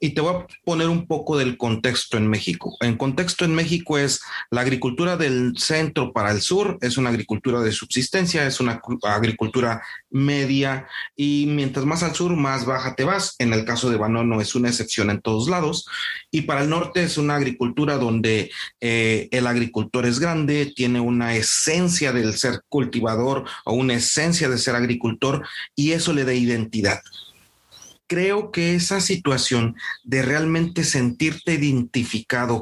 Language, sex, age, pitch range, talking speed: Spanish, male, 40-59, 120-150 Hz, 165 wpm